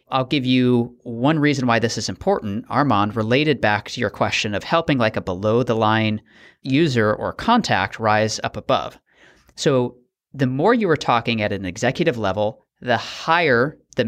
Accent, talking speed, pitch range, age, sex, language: American, 175 wpm, 105-130 Hz, 30-49, male, English